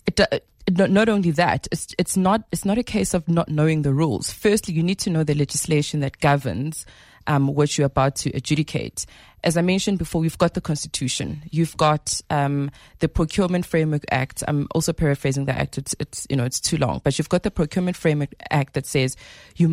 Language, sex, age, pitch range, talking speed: English, female, 20-39, 150-190 Hz, 210 wpm